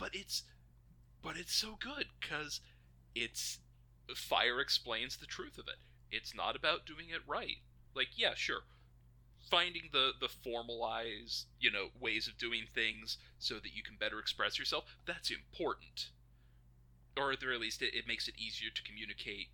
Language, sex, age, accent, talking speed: English, male, 30-49, American, 165 wpm